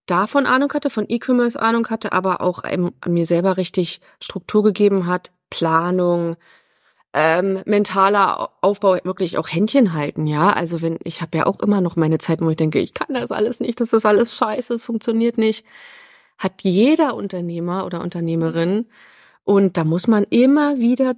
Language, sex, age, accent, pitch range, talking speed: German, female, 30-49, German, 170-210 Hz, 175 wpm